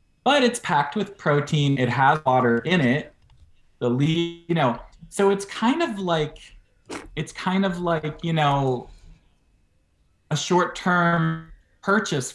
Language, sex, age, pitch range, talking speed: English, male, 20-39, 125-170 Hz, 140 wpm